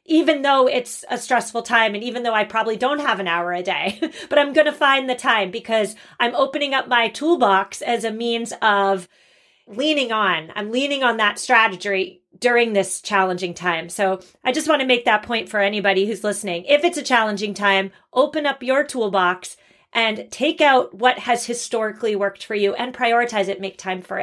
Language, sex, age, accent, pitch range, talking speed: English, female, 30-49, American, 205-270 Hz, 195 wpm